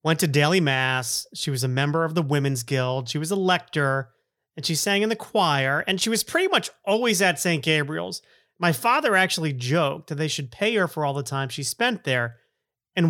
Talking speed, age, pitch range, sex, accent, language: 220 wpm, 30-49, 145-190 Hz, male, American, English